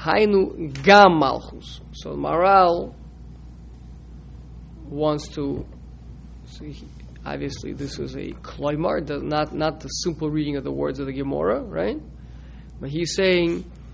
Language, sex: English, male